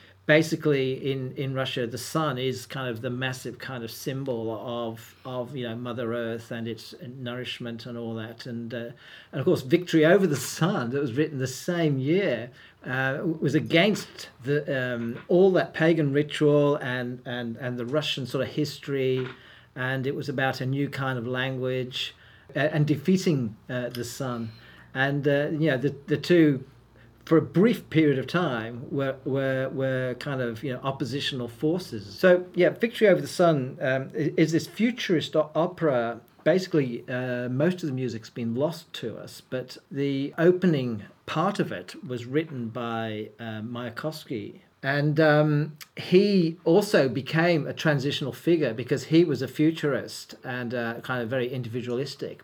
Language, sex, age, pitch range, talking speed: English, male, 50-69, 125-155 Hz, 165 wpm